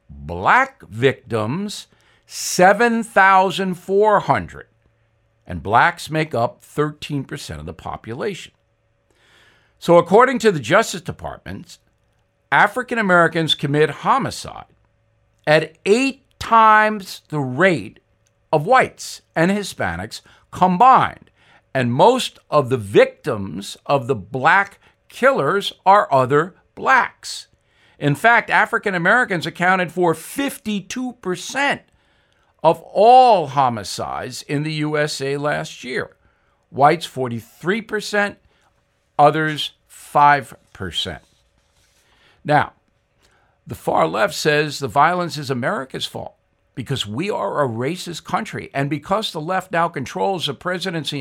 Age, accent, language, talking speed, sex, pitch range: 60-79, American, English, 100 wpm, male, 140-195 Hz